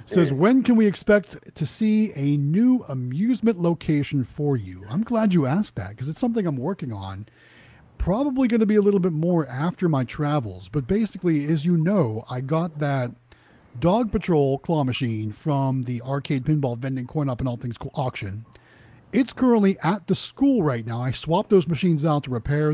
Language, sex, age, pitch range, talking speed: English, male, 40-59, 125-185 Hz, 195 wpm